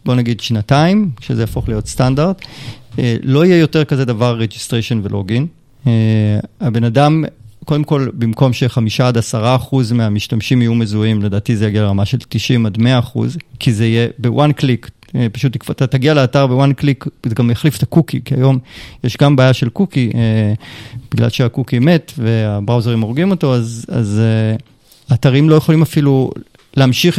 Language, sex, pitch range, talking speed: Hebrew, male, 115-140 Hz, 160 wpm